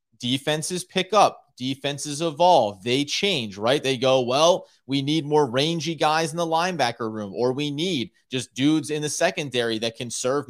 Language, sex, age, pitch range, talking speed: English, male, 30-49, 130-180 Hz, 175 wpm